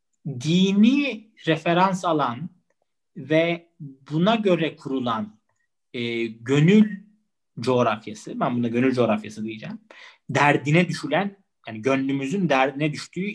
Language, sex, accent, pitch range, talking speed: Turkish, male, native, 135-205 Hz, 95 wpm